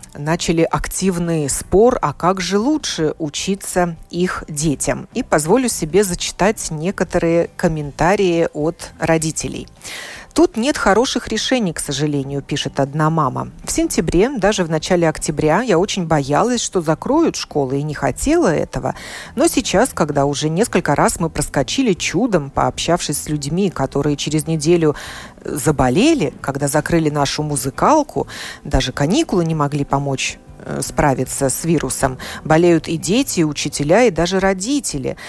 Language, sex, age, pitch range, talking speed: Russian, female, 40-59, 150-205 Hz, 135 wpm